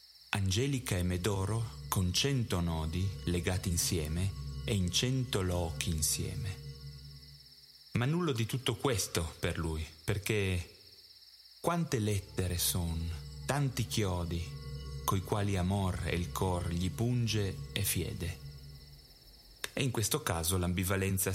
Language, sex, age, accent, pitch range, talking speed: Italian, male, 30-49, native, 80-100 Hz, 115 wpm